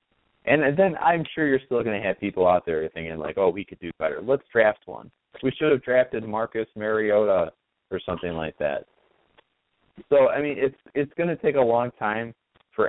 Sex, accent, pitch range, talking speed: male, American, 90-120 Hz, 205 wpm